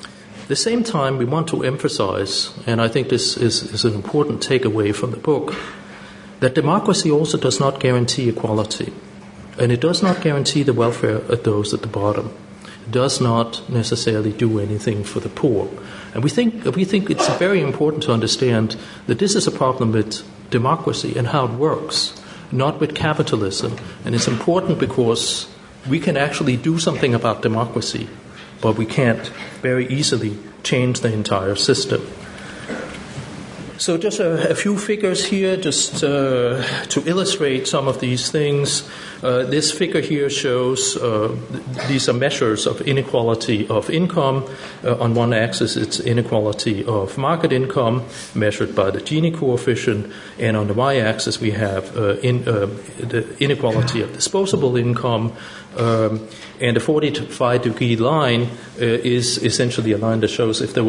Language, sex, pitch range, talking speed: English, male, 115-145 Hz, 160 wpm